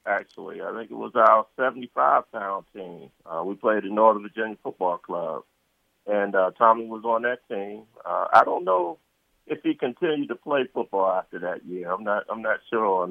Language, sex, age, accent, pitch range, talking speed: English, male, 40-59, American, 95-115 Hz, 200 wpm